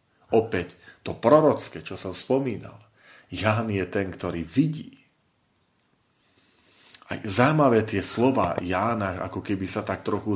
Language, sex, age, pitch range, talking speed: Slovak, male, 40-59, 90-110 Hz, 120 wpm